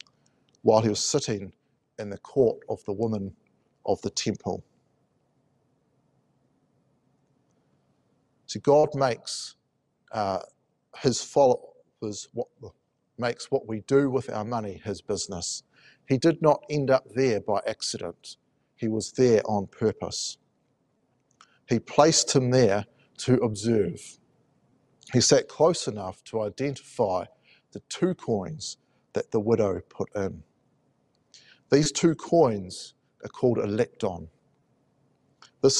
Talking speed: 115 wpm